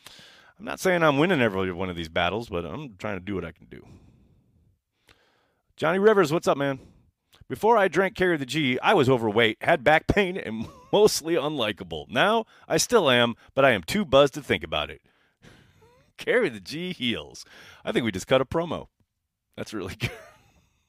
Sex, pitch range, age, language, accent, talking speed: male, 85-140 Hz, 30-49, English, American, 190 wpm